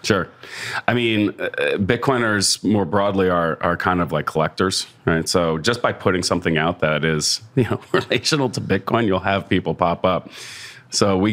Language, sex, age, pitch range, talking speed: English, male, 30-49, 80-95 Hz, 175 wpm